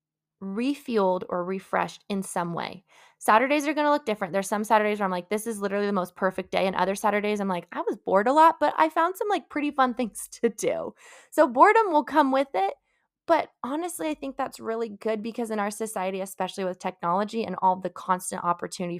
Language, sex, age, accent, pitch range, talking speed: English, female, 20-39, American, 180-235 Hz, 220 wpm